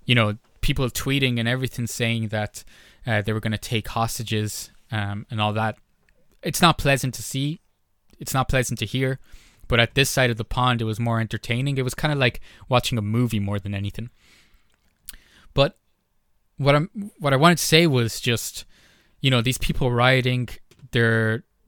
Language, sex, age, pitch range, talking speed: English, male, 20-39, 110-130 Hz, 185 wpm